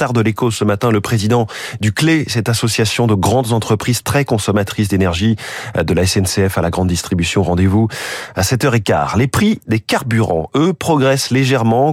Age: 20-39